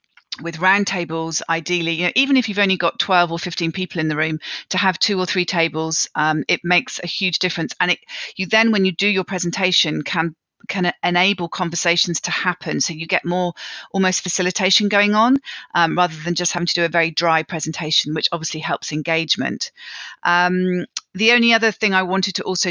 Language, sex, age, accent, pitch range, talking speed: English, female, 40-59, British, 165-185 Hz, 205 wpm